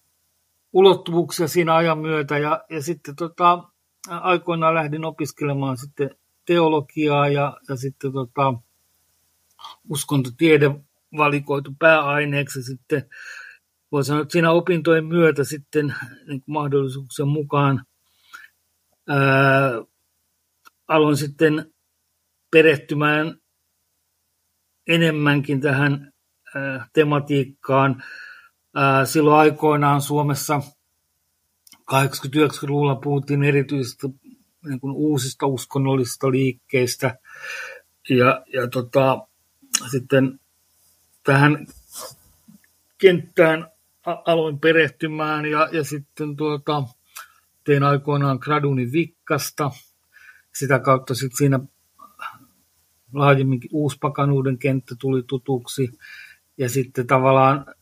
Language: Finnish